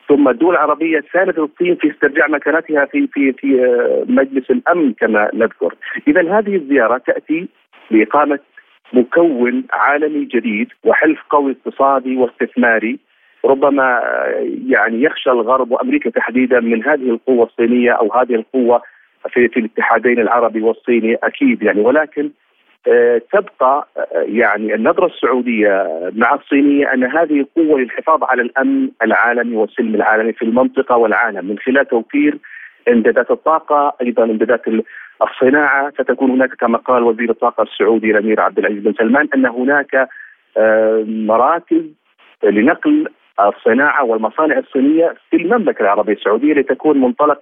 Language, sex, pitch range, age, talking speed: Arabic, male, 120-180 Hz, 40-59, 125 wpm